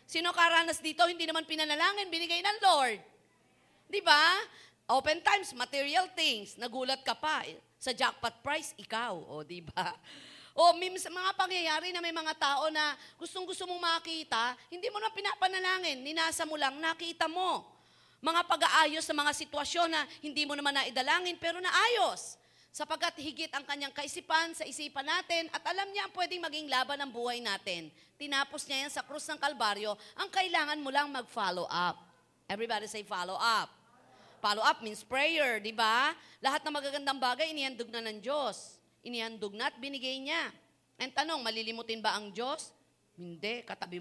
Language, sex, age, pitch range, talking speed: Filipino, female, 40-59, 230-330 Hz, 160 wpm